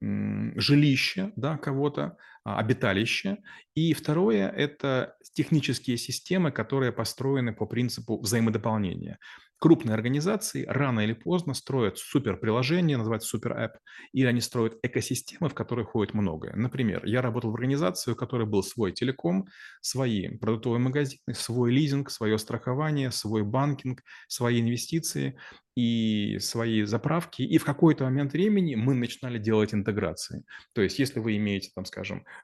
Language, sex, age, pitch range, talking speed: Russian, male, 30-49, 110-140 Hz, 135 wpm